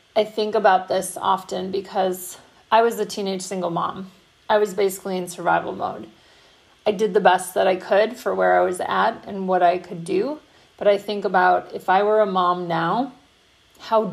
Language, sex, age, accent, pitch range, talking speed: English, female, 30-49, American, 180-215 Hz, 195 wpm